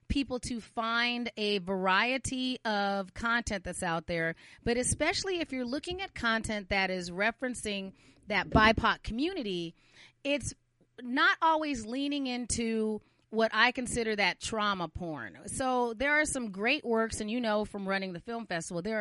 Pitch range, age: 185-250 Hz, 30-49